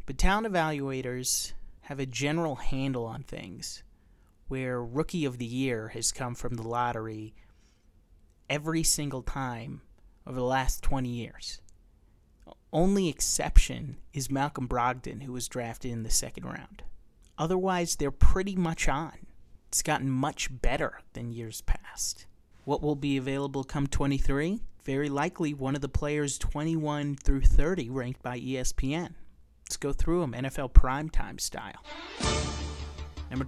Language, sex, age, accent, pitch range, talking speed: English, male, 30-49, American, 115-150 Hz, 140 wpm